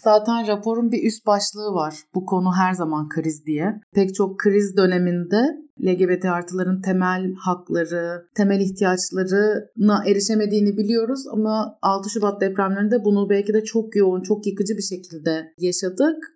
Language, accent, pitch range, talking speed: Turkish, native, 190-220 Hz, 140 wpm